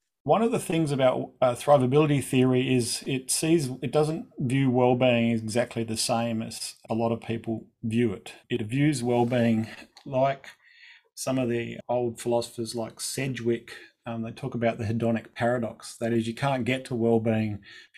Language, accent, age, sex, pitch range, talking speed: English, Australian, 30-49, male, 115-135 Hz, 170 wpm